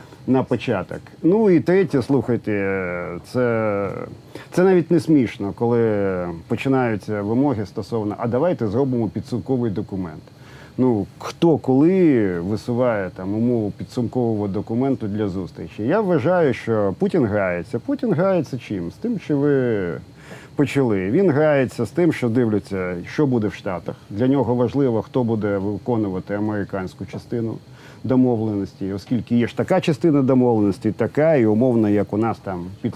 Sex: male